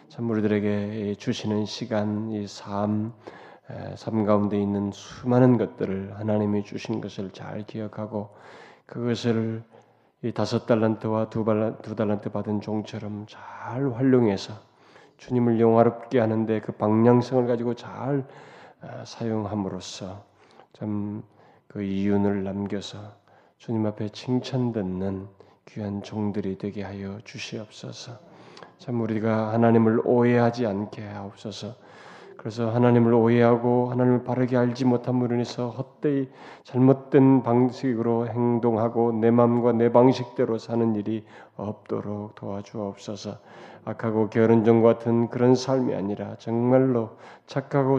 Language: Korean